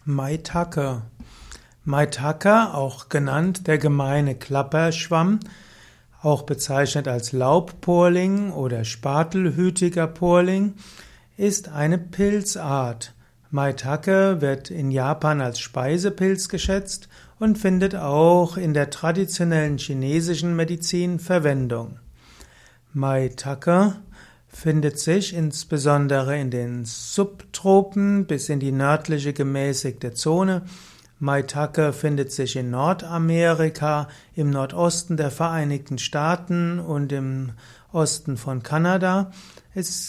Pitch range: 140-175 Hz